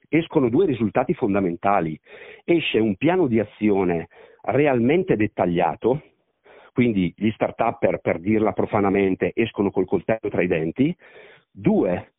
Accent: native